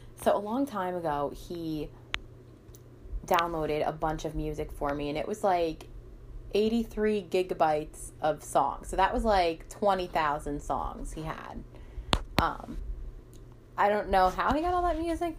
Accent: American